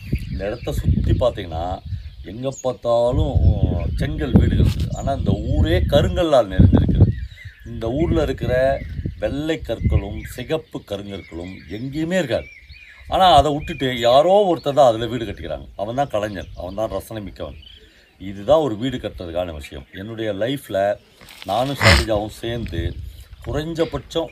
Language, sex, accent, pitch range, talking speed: Tamil, male, native, 85-120 Hz, 115 wpm